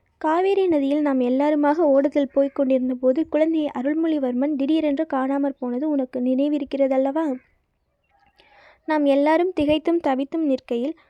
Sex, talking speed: female, 105 wpm